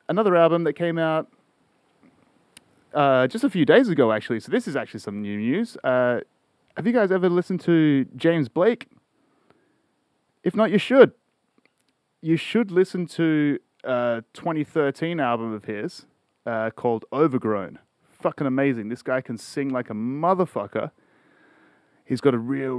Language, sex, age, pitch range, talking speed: English, male, 30-49, 115-160 Hz, 150 wpm